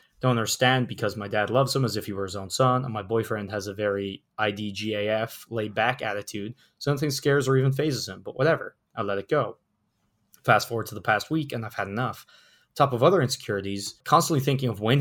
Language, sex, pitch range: English, male, 105-130 Hz